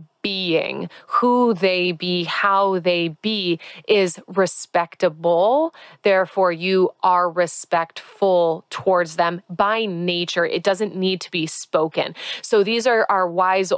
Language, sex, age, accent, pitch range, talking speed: English, female, 20-39, American, 175-200 Hz, 120 wpm